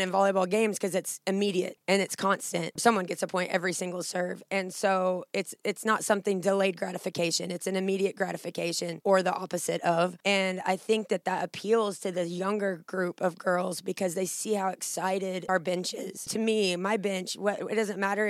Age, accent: 20-39, American